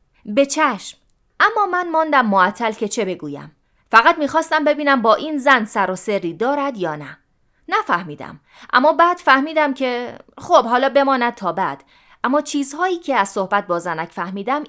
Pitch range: 195-300 Hz